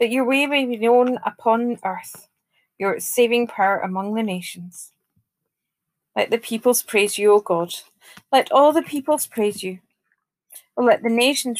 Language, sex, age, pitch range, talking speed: English, female, 30-49, 190-245 Hz, 155 wpm